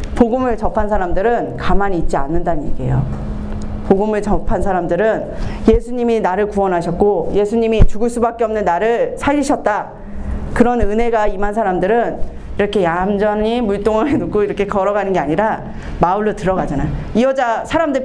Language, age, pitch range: Korean, 40-59, 175-235 Hz